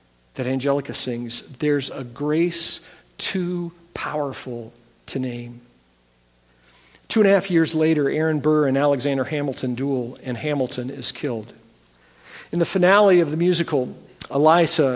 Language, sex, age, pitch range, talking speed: English, male, 50-69, 130-175 Hz, 130 wpm